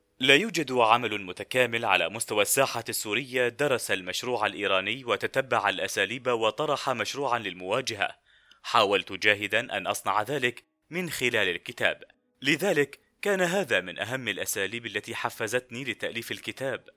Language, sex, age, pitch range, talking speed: Arabic, male, 30-49, 115-155 Hz, 120 wpm